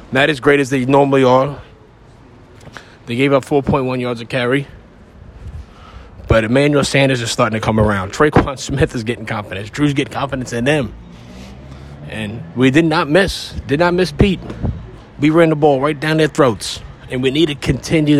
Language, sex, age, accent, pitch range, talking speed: English, male, 30-49, American, 120-160 Hz, 180 wpm